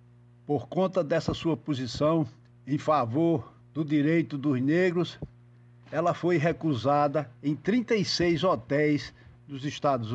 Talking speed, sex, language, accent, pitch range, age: 110 wpm, male, Portuguese, Brazilian, 120-160 Hz, 60-79